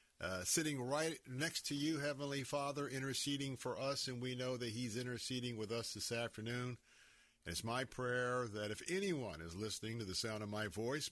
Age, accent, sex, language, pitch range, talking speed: 50-69, American, male, English, 110-130 Hz, 190 wpm